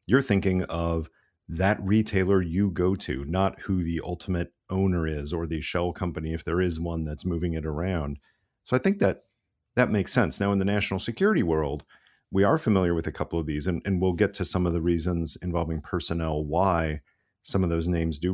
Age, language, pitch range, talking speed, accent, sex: 40-59, English, 85-100 Hz, 210 wpm, American, male